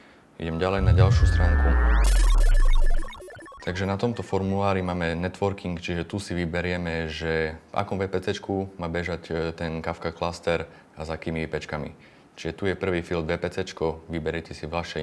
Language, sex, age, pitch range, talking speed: Slovak, male, 20-39, 80-85 Hz, 150 wpm